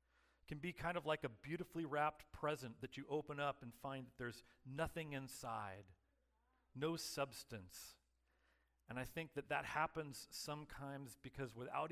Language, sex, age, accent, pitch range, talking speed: English, male, 40-59, American, 105-160 Hz, 150 wpm